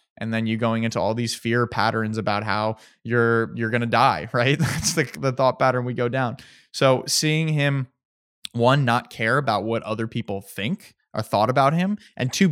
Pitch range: 115-140 Hz